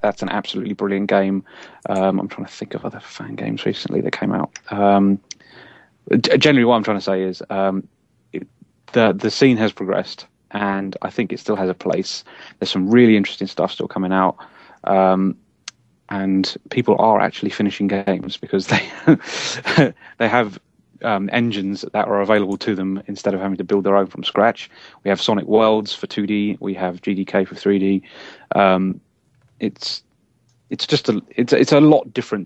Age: 30-49